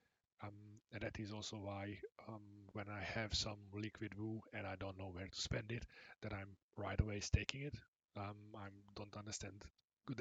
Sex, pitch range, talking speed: male, 95-110 Hz, 190 wpm